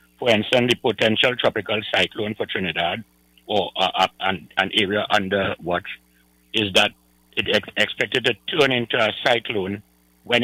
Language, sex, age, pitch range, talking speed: English, male, 60-79, 90-115 Hz, 150 wpm